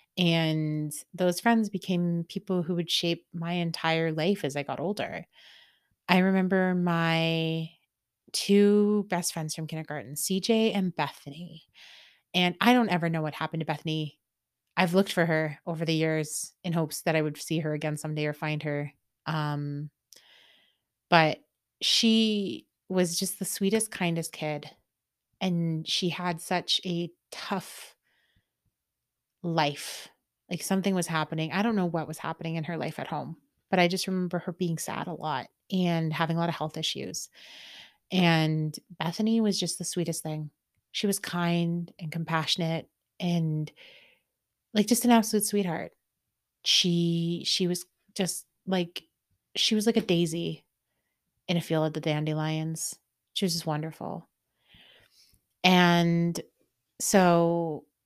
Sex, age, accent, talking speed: female, 30-49, American, 145 wpm